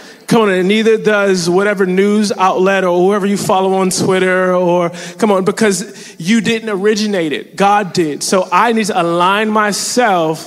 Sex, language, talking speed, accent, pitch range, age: male, English, 170 wpm, American, 175-210 Hz, 20-39